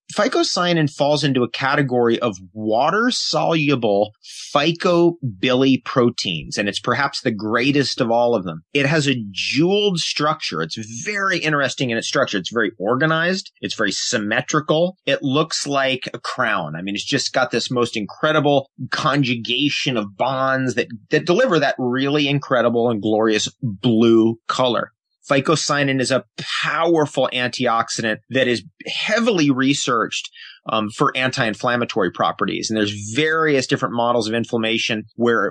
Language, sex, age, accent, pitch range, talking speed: English, male, 30-49, American, 115-150 Hz, 135 wpm